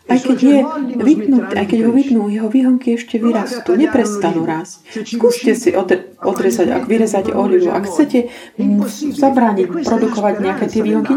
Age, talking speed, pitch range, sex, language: 30-49, 145 wpm, 205-255 Hz, female, Slovak